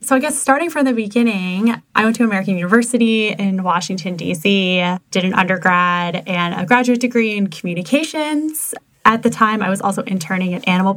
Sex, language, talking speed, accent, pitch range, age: female, English, 180 wpm, American, 185-230 Hz, 10-29